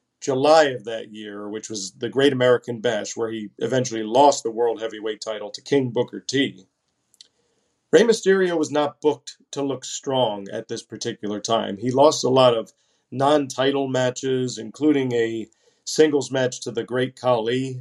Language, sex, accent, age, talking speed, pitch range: English, male, American, 40-59, 165 wpm, 125-150 Hz